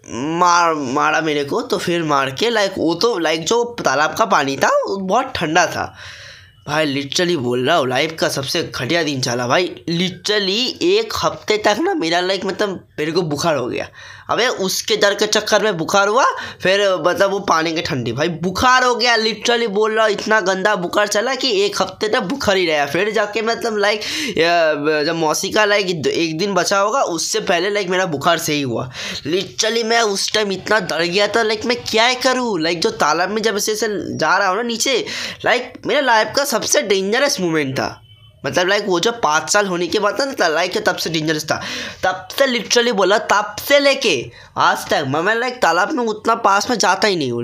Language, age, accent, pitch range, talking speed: Hindi, 10-29, native, 160-220 Hz, 210 wpm